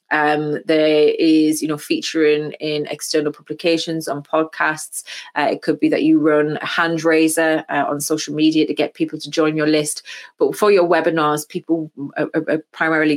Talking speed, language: 180 wpm, English